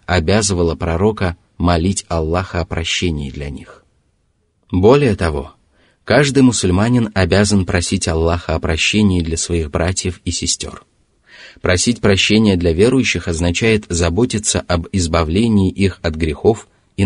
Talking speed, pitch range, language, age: 120 wpm, 85-105 Hz, Russian, 30-49